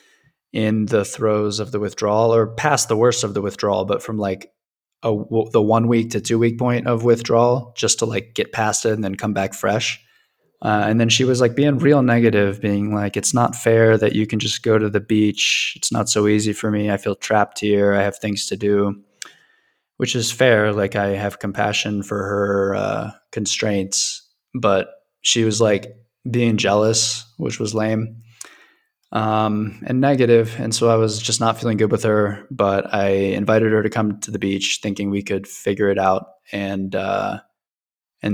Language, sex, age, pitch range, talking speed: English, male, 20-39, 100-115 Hz, 195 wpm